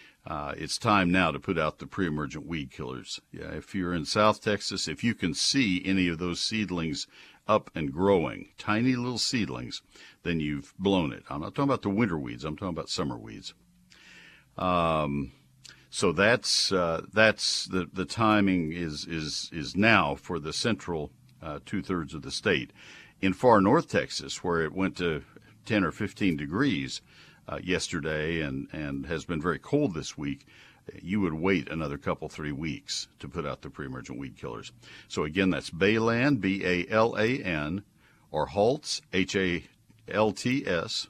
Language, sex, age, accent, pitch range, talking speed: English, male, 60-79, American, 80-105 Hz, 160 wpm